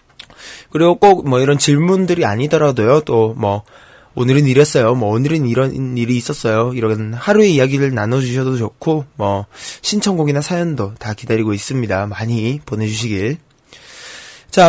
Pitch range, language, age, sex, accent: 115-165 Hz, Korean, 20-39, male, native